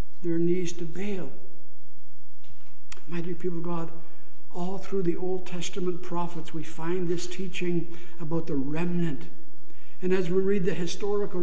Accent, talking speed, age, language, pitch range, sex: American, 145 wpm, 60-79, English, 175-200 Hz, male